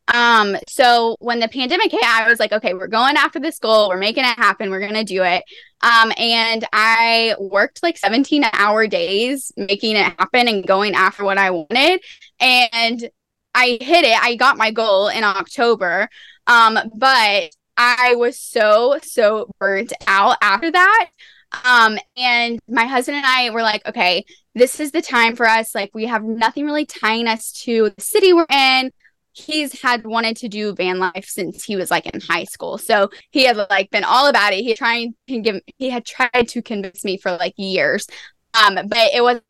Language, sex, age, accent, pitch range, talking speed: English, female, 10-29, American, 210-255 Hz, 195 wpm